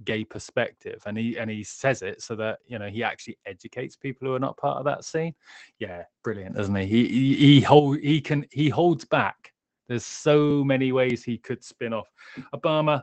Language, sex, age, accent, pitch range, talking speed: English, male, 20-39, British, 115-150 Hz, 205 wpm